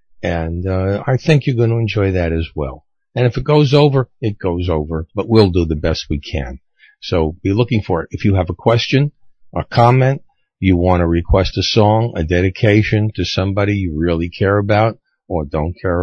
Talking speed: 205 wpm